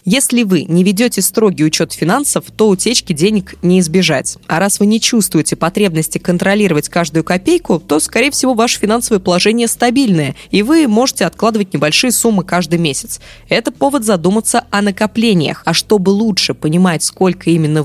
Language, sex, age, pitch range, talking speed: Russian, female, 20-39, 160-220 Hz, 160 wpm